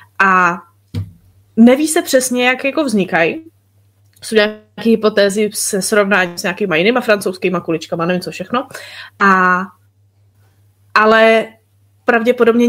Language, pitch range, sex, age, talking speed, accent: Czech, 180-230 Hz, female, 20-39, 110 wpm, native